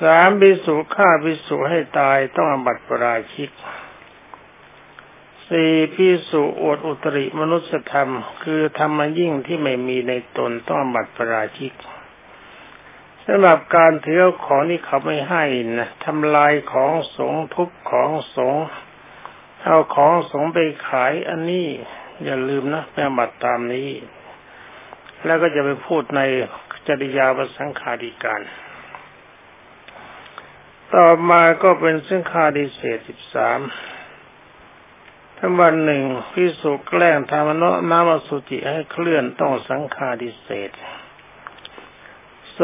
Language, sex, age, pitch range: Thai, male, 60-79, 135-165 Hz